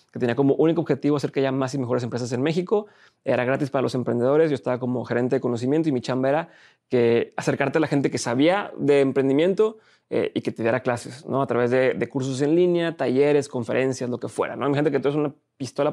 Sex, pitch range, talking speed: male, 130-160 Hz, 250 wpm